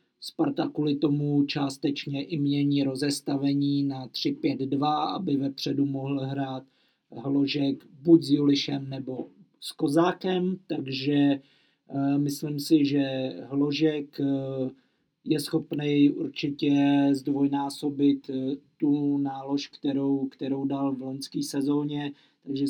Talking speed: 105 wpm